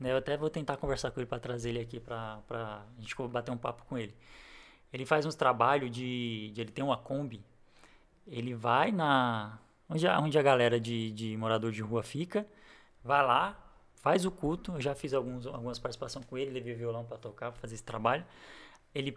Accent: Brazilian